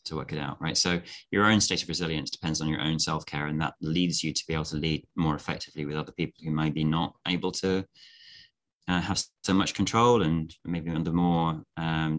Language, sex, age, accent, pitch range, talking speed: English, male, 20-39, British, 80-90 Hz, 230 wpm